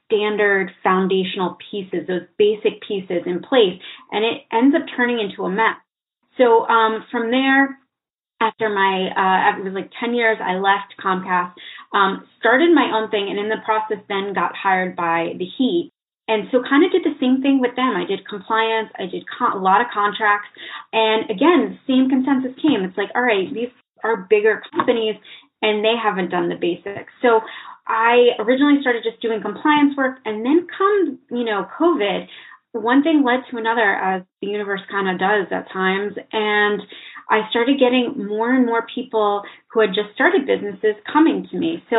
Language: English